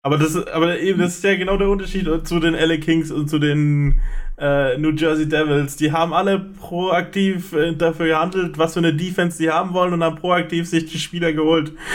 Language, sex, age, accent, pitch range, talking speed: German, male, 20-39, German, 145-175 Hz, 205 wpm